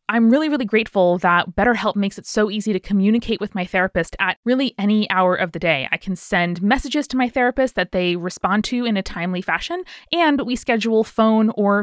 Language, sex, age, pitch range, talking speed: English, female, 20-39, 180-230 Hz, 215 wpm